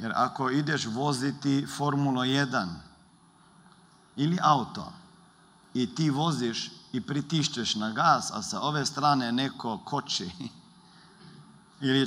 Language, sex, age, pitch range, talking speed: Croatian, male, 50-69, 135-185 Hz, 110 wpm